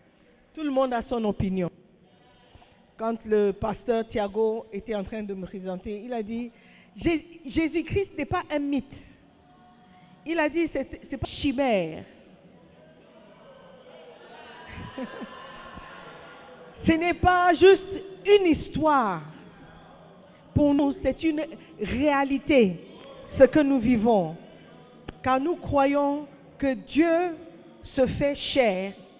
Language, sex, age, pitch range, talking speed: French, female, 50-69, 205-295 Hz, 110 wpm